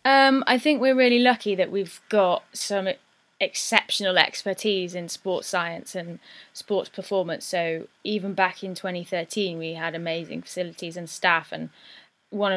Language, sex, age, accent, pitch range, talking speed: English, female, 10-29, British, 170-190 Hz, 150 wpm